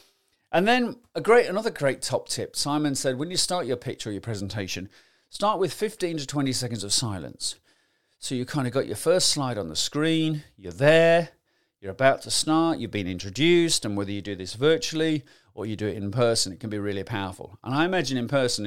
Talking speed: 220 wpm